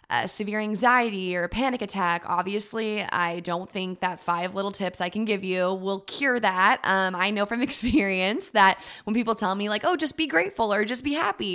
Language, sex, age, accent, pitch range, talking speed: English, female, 20-39, American, 180-210 Hz, 215 wpm